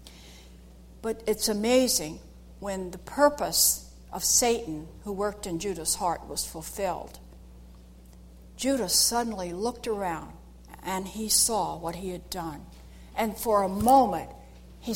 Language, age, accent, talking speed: English, 60-79, American, 125 wpm